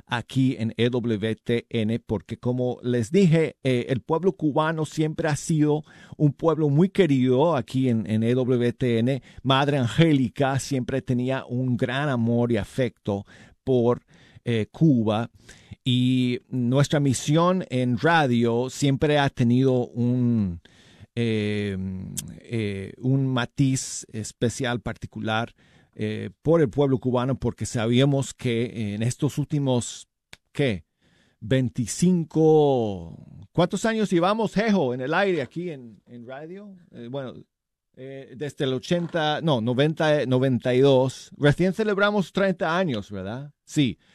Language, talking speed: Spanish, 120 wpm